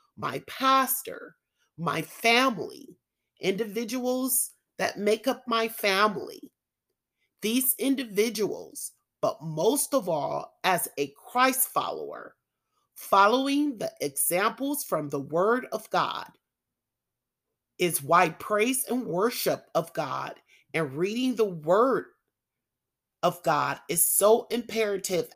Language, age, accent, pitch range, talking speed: English, 30-49, American, 170-255 Hz, 105 wpm